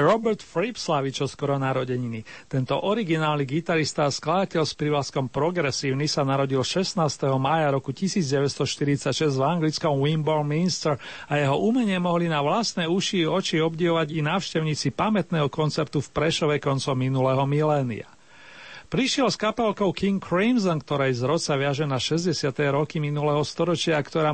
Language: Slovak